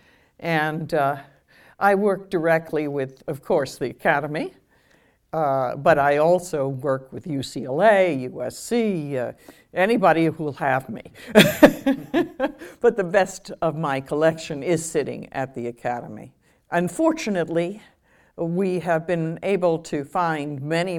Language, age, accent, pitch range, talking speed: English, 60-79, American, 135-175 Hz, 125 wpm